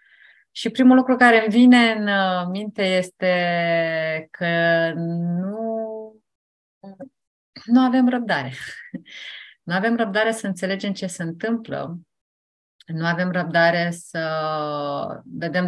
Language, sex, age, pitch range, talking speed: Romanian, female, 30-49, 155-195 Hz, 105 wpm